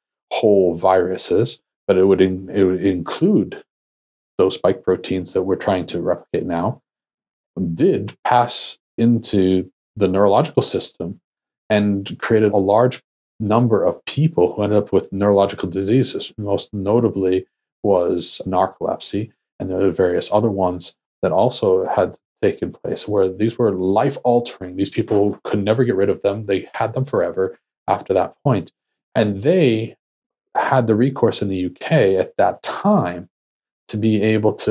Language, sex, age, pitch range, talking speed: English, male, 40-59, 95-115 Hz, 150 wpm